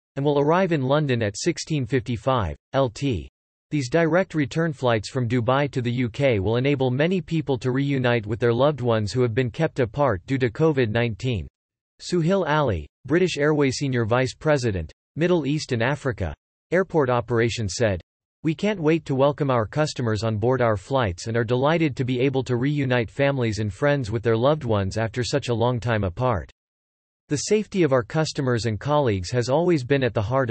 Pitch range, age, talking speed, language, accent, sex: 115-150 Hz, 40-59, 185 wpm, English, American, male